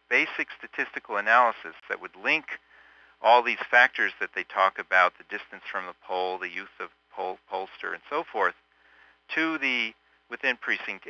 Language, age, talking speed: English, 50-69, 150 wpm